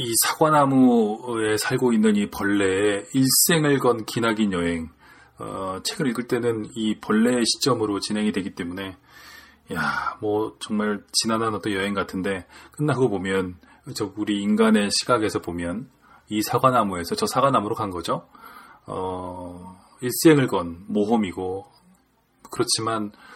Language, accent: Korean, native